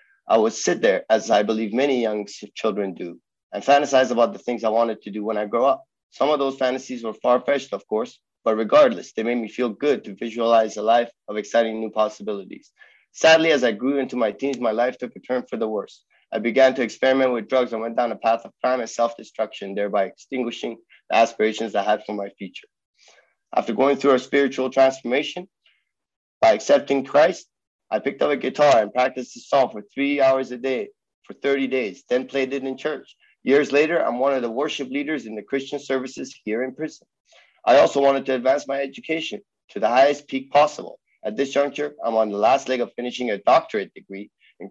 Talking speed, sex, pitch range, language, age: 210 wpm, male, 110-140 Hz, English, 30-49